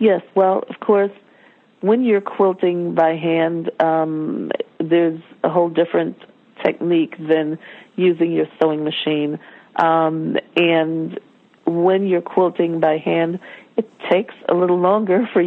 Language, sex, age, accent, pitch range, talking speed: English, female, 40-59, American, 160-180 Hz, 130 wpm